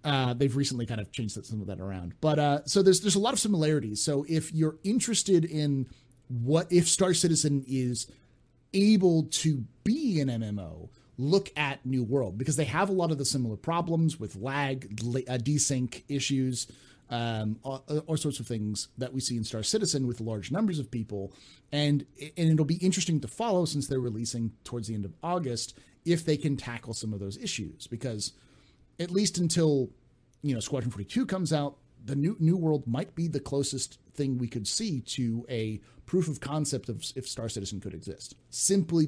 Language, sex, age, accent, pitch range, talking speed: English, male, 30-49, American, 115-155 Hz, 195 wpm